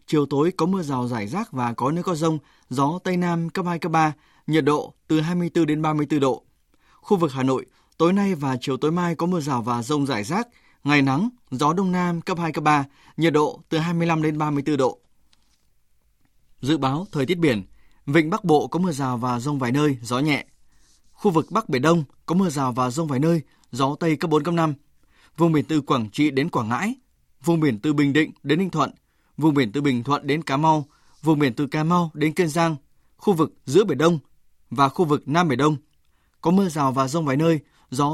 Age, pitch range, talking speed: 20-39, 135-165 Hz, 230 wpm